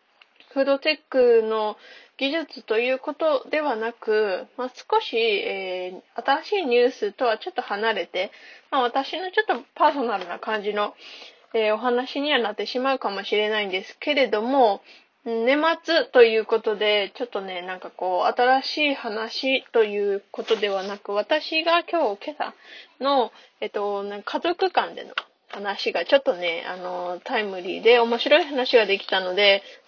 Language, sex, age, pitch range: Japanese, female, 20-39, 210-305 Hz